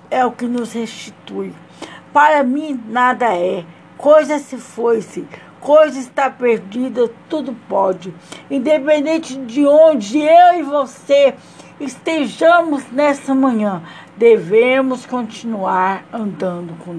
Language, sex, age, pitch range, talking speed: Portuguese, female, 60-79, 220-285 Hz, 105 wpm